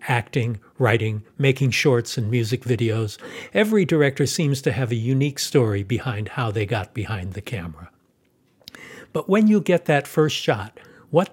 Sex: male